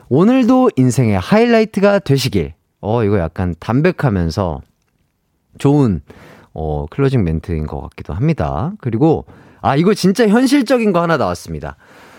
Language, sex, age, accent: Korean, male, 30-49, native